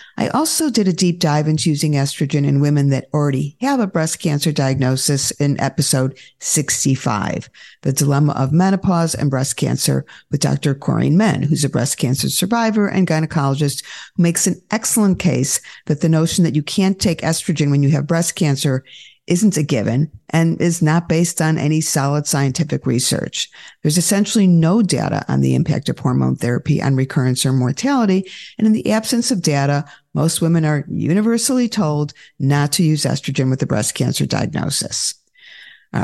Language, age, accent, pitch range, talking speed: English, 50-69, American, 145-180 Hz, 175 wpm